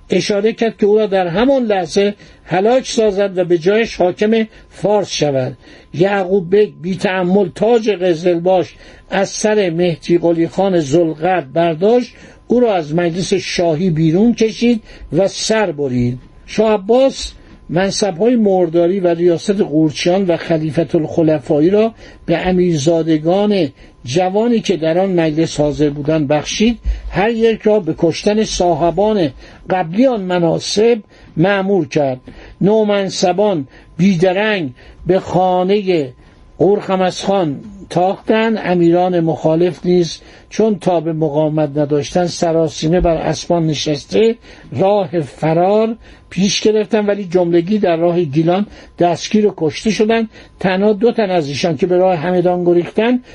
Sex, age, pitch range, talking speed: male, 60-79, 165-210 Hz, 125 wpm